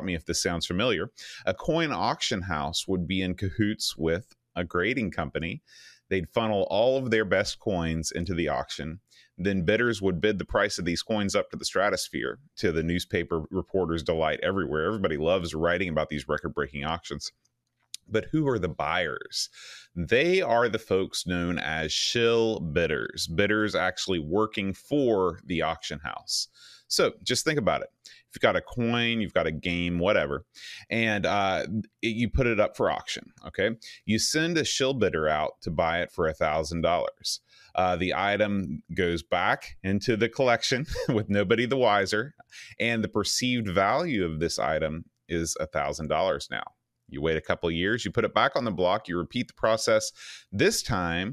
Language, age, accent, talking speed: English, 30-49, American, 180 wpm